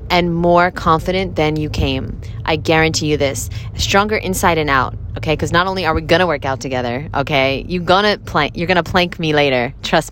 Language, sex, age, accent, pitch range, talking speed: English, female, 20-39, American, 145-175 Hz, 200 wpm